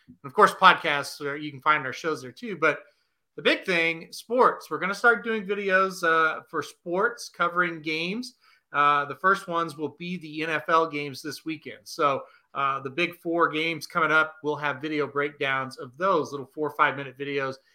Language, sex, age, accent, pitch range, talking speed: English, male, 30-49, American, 150-185 Hz, 195 wpm